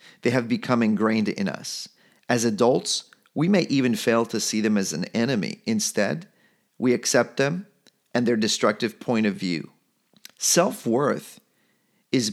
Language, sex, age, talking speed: English, male, 40-59, 145 wpm